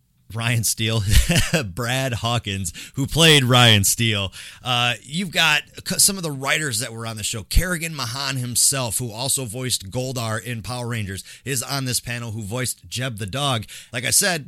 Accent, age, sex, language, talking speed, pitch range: American, 30-49, male, English, 175 wpm, 110-145 Hz